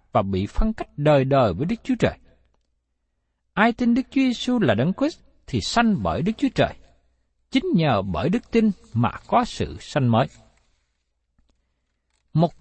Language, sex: Vietnamese, male